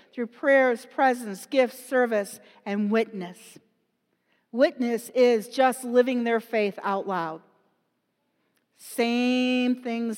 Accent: American